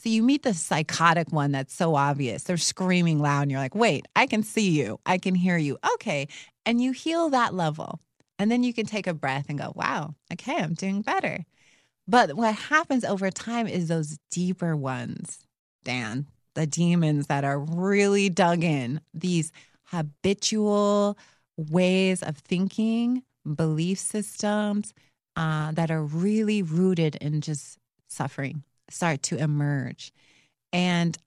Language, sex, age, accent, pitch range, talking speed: English, female, 30-49, American, 150-195 Hz, 155 wpm